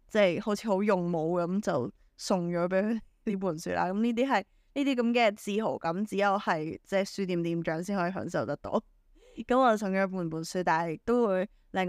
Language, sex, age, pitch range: Chinese, female, 10-29, 175-220 Hz